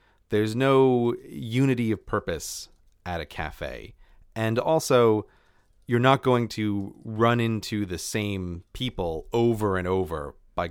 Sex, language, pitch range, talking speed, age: male, English, 85-115 Hz, 130 wpm, 30-49